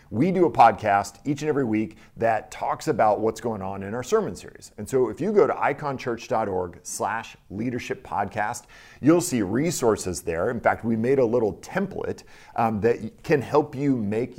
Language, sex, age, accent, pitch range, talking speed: English, male, 40-59, American, 100-130 Hz, 190 wpm